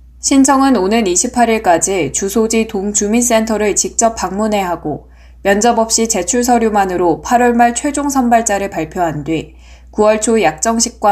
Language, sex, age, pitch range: Korean, female, 10-29, 165-235 Hz